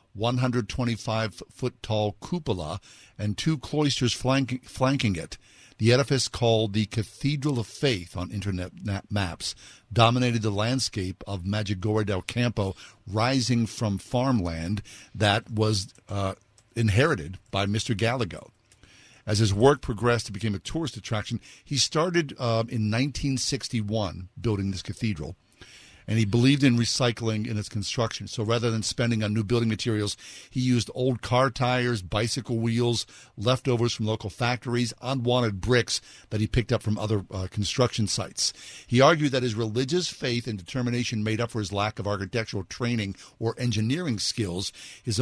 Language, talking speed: English, 145 wpm